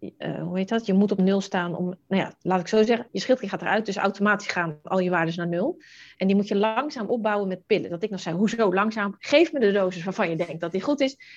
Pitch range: 180-220 Hz